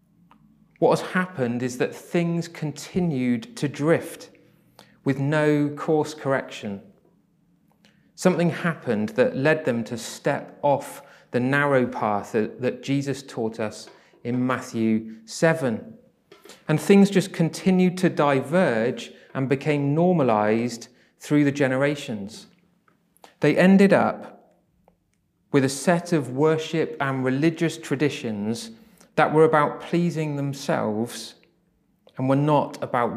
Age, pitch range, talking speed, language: 30-49, 120-165 Hz, 115 wpm, English